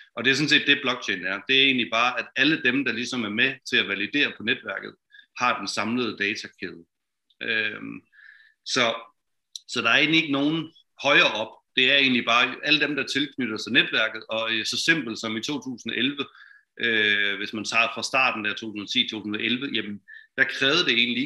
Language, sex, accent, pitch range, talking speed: Danish, male, native, 105-140 Hz, 190 wpm